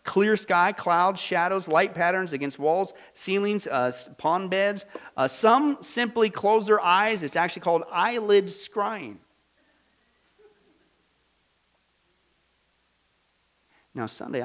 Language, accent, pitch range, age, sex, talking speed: English, American, 140-195 Hz, 50-69, male, 105 wpm